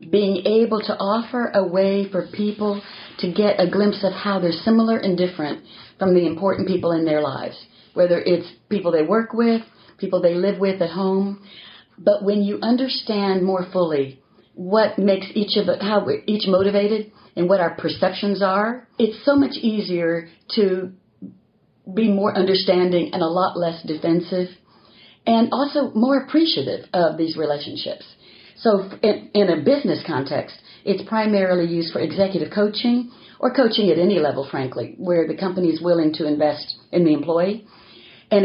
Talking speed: 165 wpm